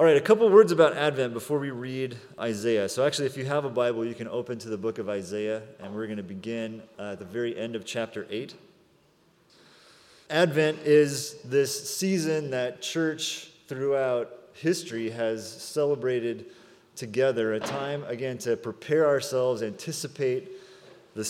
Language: English